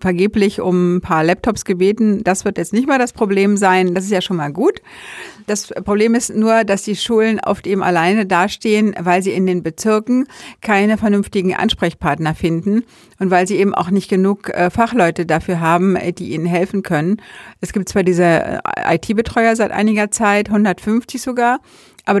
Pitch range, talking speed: 180-215 Hz, 175 wpm